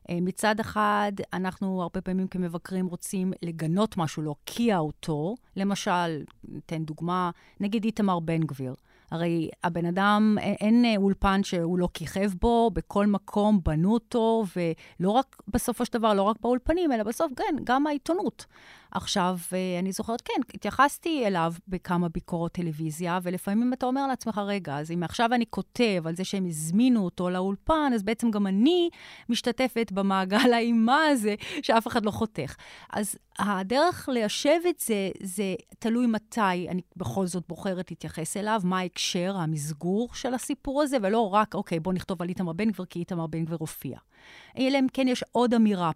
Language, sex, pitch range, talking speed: Hebrew, female, 180-240 Hz, 160 wpm